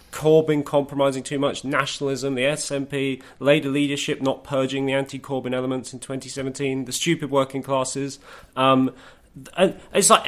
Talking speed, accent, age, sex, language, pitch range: 135 wpm, British, 20-39, male, English, 120-140 Hz